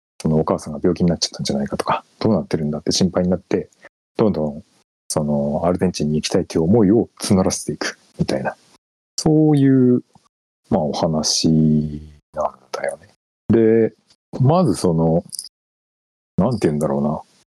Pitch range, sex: 75-115 Hz, male